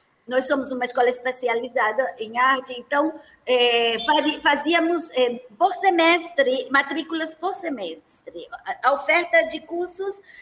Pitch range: 245-340 Hz